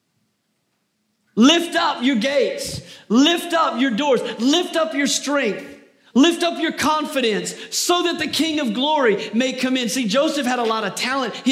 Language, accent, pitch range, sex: English, American, 195-250 Hz, male